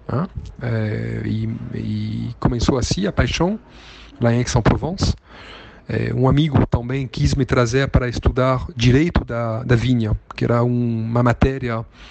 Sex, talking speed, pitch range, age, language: male, 145 wpm, 115-135 Hz, 40-59, Portuguese